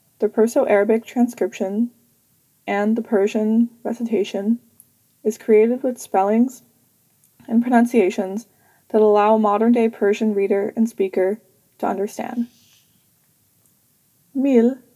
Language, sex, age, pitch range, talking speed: English, female, 20-39, 205-235 Hz, 105 wpm